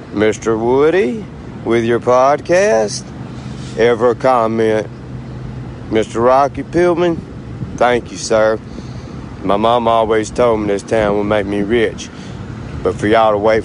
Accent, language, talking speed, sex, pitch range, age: American, English, 125 wpm, male, 95-135 Hz, 60-79